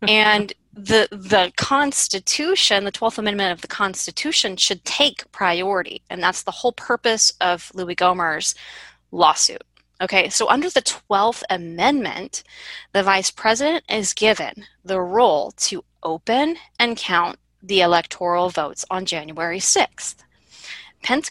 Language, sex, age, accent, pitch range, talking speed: English, female, 20-39, American, 180-225 Hz, 130 wpm